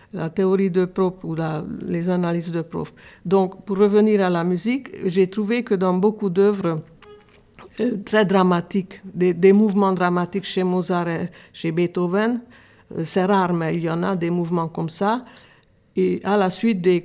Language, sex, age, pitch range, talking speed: French, female, 60-79, 175-205 Hz, 180 wpm